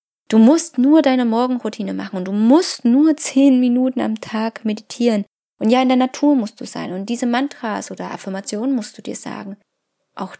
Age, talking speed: 20-39, 190 wpm